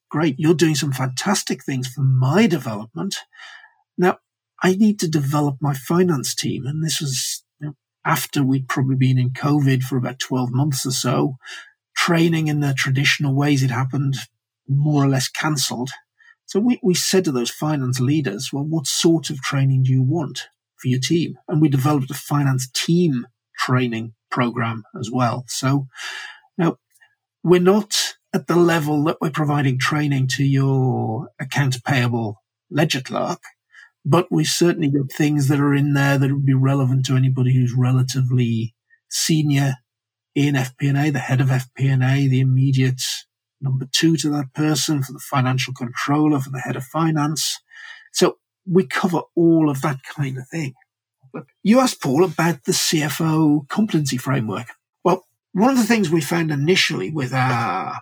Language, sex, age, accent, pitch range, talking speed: English, male, 40-59, British, 130-165 Hz, 160 wpm